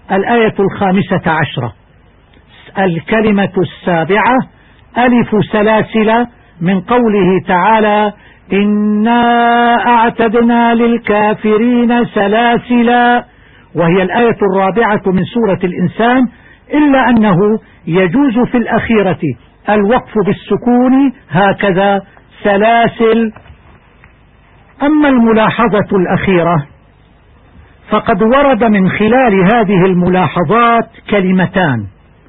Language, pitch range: Arabic, 185-235 Hz